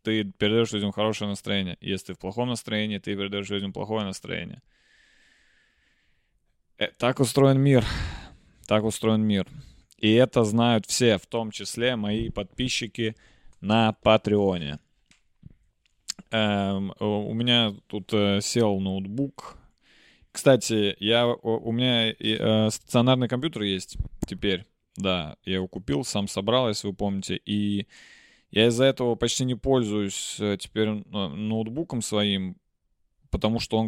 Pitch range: 105-125 Hz